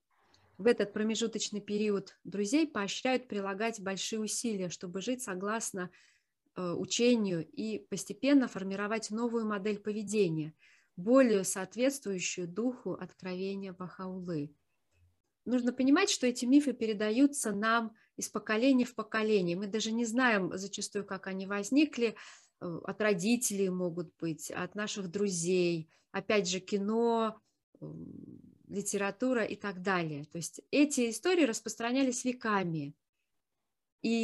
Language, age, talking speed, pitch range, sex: Russian, 30-49, 115 wpm, 190-235 Hz, female